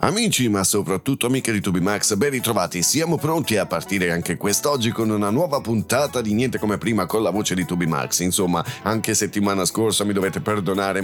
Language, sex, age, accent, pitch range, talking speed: Italian, male, 40-59, native, 95-120 Hz, 185 wpm